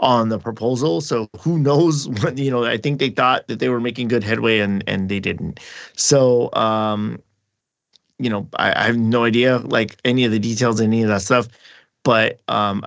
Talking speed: 205 wpm